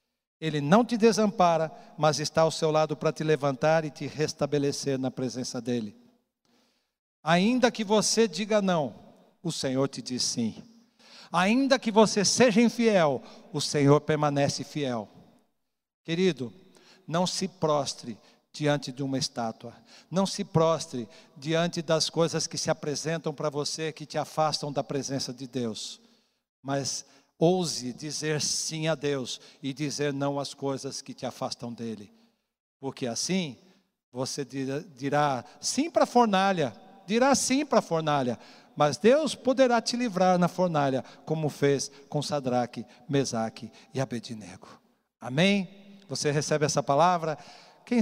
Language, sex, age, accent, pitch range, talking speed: Portuguese, male, 60-79, Brazilian, 140-200 Hz, 140 wpm